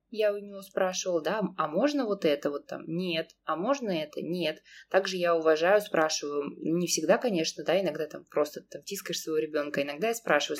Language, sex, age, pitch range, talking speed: Russian, female, 20-39, 160-215 Hz, 190 wpm